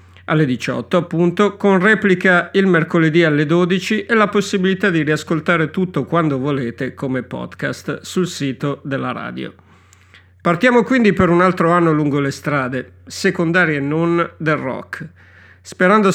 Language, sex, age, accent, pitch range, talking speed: Italian, male, 50-69, native, 135-180 Hz, 140 wpm